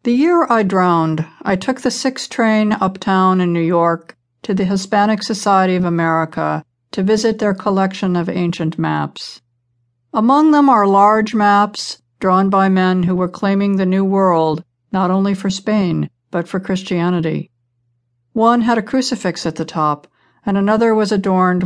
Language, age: English, 50-69